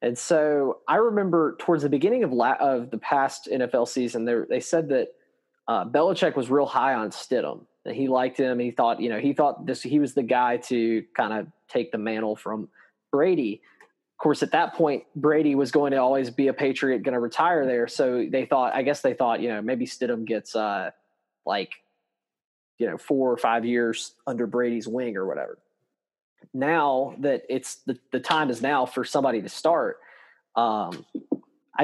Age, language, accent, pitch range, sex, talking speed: 20-39, English, American, 120-155 Hz, male, 195 wpm